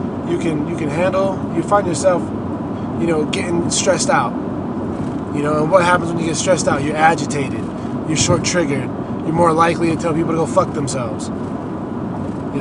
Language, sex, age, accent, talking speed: English, male, 20-39, American, 180 wpm